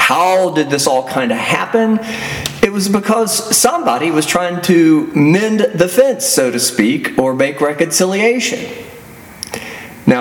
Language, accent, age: English, American, 40-59